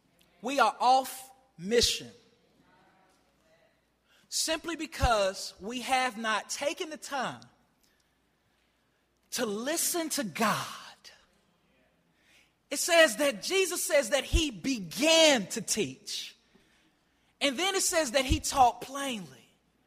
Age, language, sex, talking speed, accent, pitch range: 30-49, English, male, 105 wpm, American, 295-410 Hz